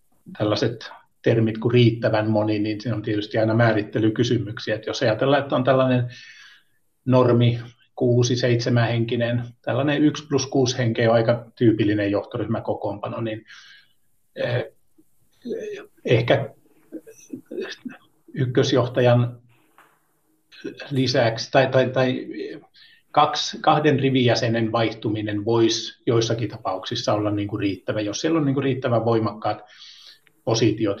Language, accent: Finnish, native